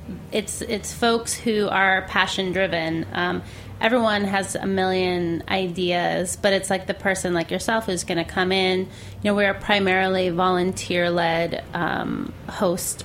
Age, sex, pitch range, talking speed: 30-49, female, 175-205 Hz, 145 wpm